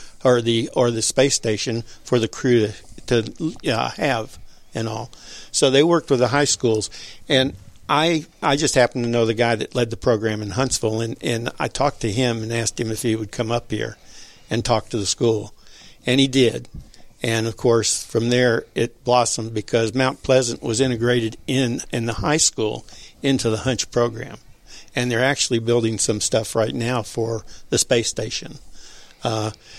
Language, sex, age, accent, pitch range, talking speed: English, male, 60-79, American, 115-125 Hz, 190 wpm